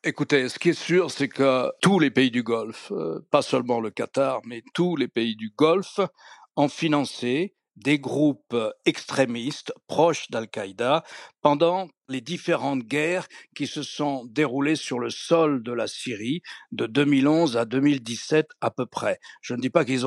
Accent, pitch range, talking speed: French, 130-160 Hz, 165 wpm